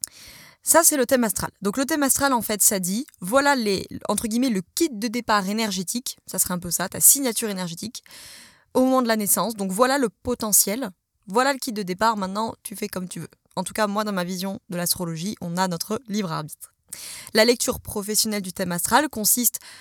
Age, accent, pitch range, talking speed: 20-39, French, 190-245 Hz, 210 wpm